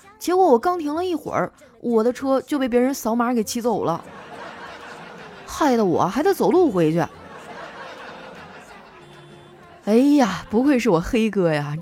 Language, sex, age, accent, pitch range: Chinese, female, 20-39, native, 175-270 Hz